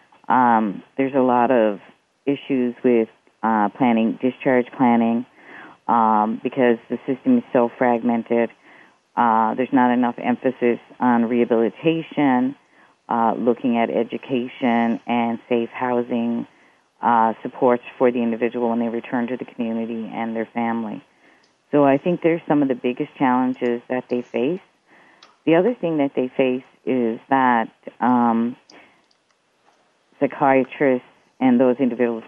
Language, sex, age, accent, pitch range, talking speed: English, female, 40-59, American, 115-130 Hz, 130 wpm